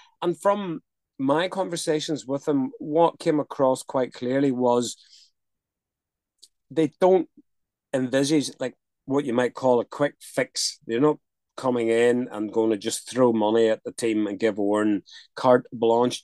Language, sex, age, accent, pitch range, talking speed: English, male, 30-49, British, 115-145 Hz, 150 wpm